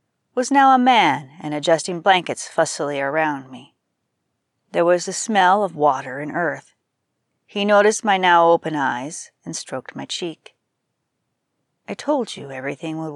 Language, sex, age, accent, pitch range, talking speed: English, female, 40-59, American, 150-195 Hz, 150 wpm